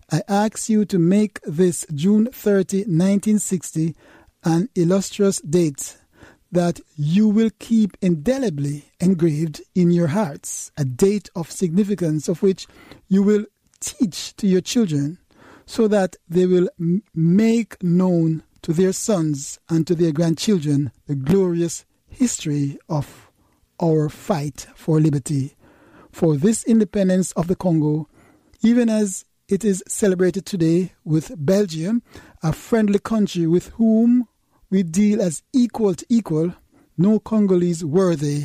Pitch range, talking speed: 155-200 Hz, 130 wpm